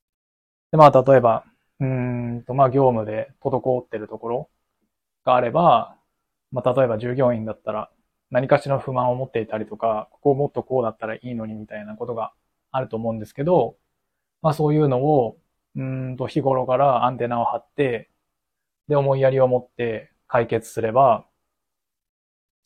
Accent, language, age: native, Japanese, 20-39